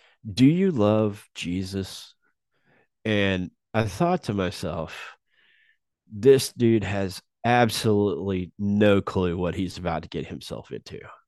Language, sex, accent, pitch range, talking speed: English, male, American, 90-110 Hz, 115 wpm